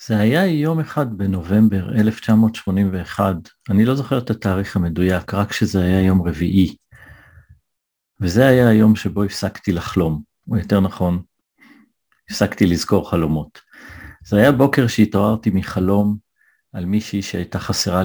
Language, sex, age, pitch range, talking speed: Hebrew, male, 50-69, 95-115 Hz, 125 wpm